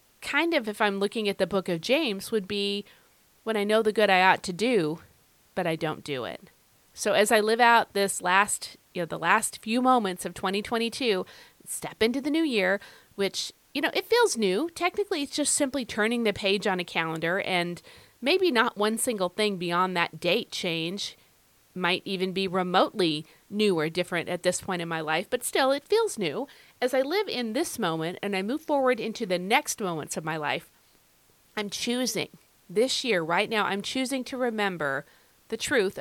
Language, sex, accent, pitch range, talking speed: English, female, American, 185-245 Hz, 200 wpm